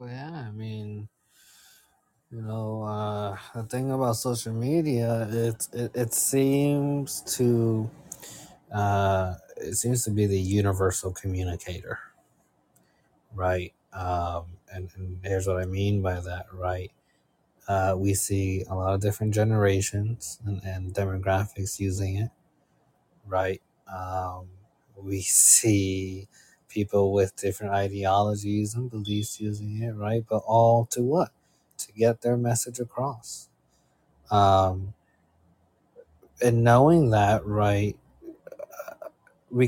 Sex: male